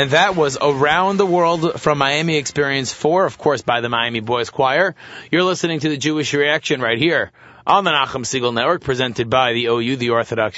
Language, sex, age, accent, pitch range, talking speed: English, male, 30-49, American, 125-160 Hz, 205 wpm